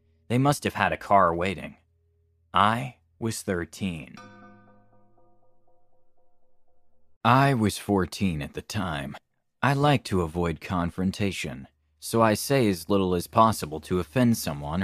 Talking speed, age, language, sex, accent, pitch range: 125 wpm, 30-49, English, male, American, 85-110 Hz